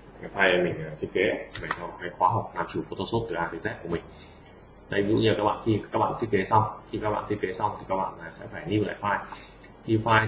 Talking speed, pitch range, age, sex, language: 275 wpm, 100-115 Hz, 20-39, male, Vietnamese